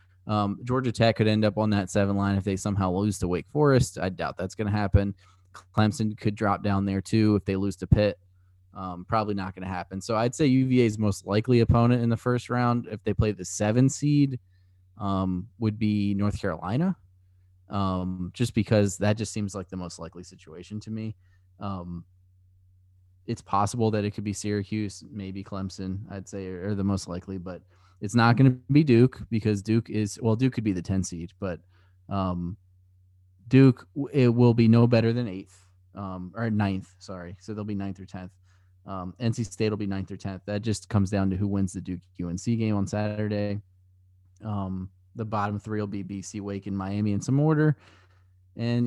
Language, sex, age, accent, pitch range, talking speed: English, male, 20-39, American, 95-110 Hz, 195 wpm